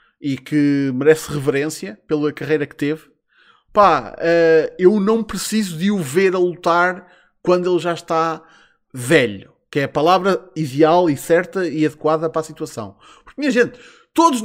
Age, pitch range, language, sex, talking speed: 20-39, 160-235 Hz, Portuguese, male, 160 wpm